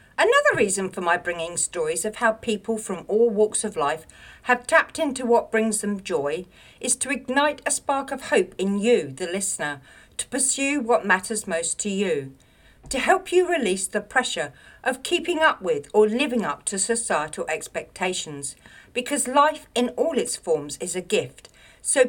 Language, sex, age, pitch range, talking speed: English, female, 60-79, 180-275 Hz, 175 wpm